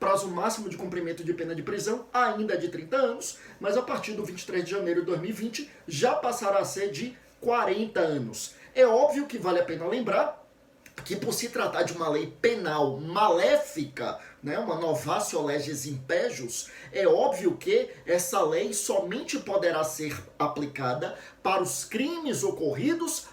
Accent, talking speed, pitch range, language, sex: Brazilian, 160 wpm, 160-235 Hz, Portuguese, male